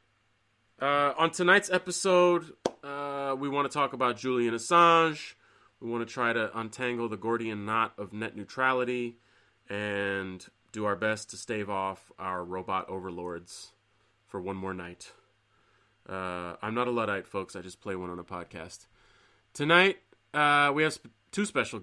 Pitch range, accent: 105-125 Hz, American